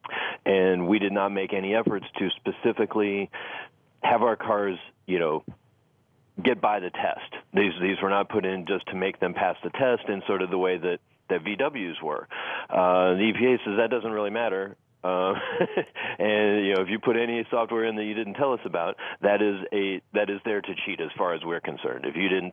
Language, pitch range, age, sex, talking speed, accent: English, 95-105 Hz, 40-59, male, 215 wpm, American